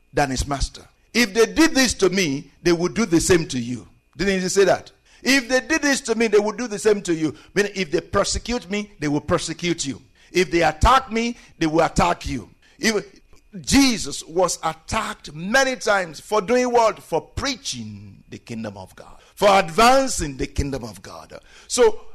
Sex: male